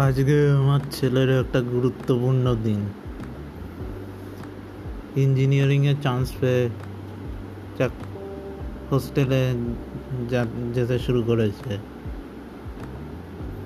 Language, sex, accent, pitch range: Bengali, male, native, 100-130 Hz